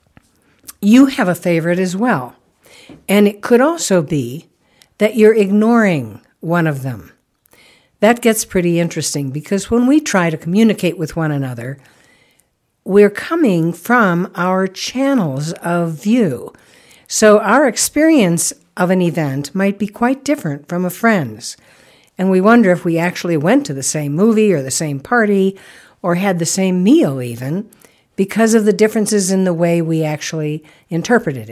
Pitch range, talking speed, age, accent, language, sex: 160-215 Hz, 155 wpm, 60-79, American, English, female